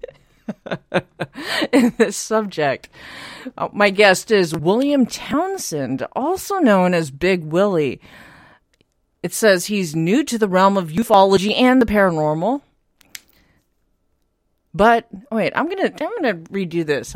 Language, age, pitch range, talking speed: English, 40-59, 180-240 Hz, 115 wpm